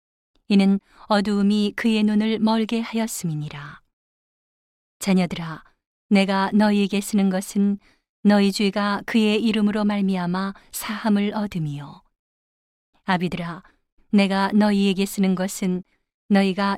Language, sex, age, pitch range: Korean, female, 40-59, 185-210 Hz